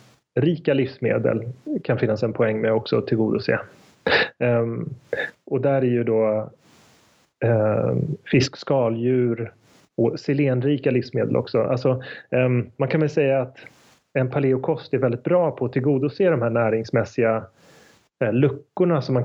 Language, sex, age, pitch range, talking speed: Swedish, male, 30-49, 115-135 Hz, 125 wpm